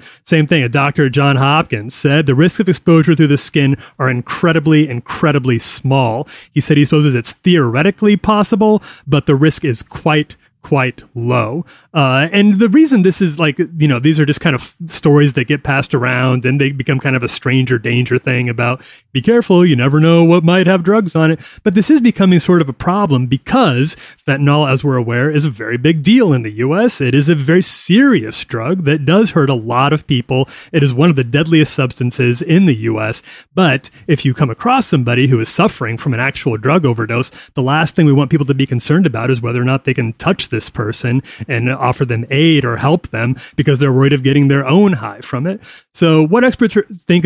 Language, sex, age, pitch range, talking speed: English, male, 30-49, 130-160 Hz, 215 wpm